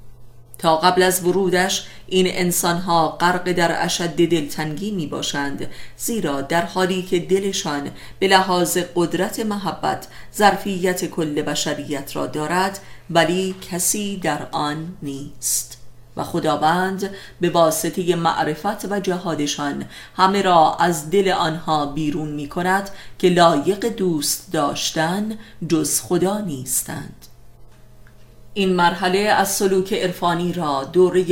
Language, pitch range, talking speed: Persian, 150-185 Hz, 120 wpm